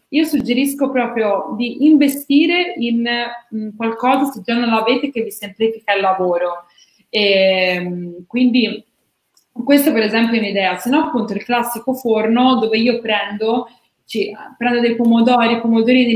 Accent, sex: native, female